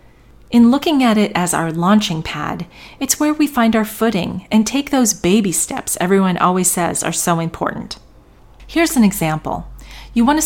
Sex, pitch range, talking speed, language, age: female, 170-230 Hz, 170 wpm, English, 40-59